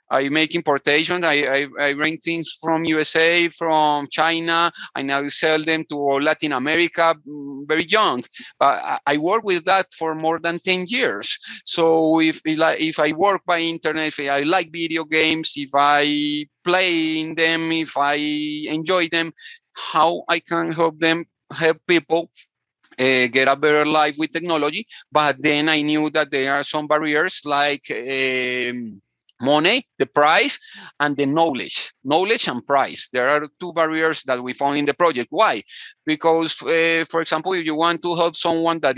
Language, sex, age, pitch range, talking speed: English, male, 30-49, 145-165 Hz, 170 wpm